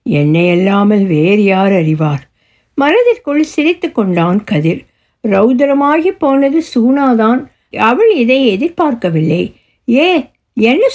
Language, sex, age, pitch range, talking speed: Tamil, female, 60-79, 175-290 Hz, 95 wpm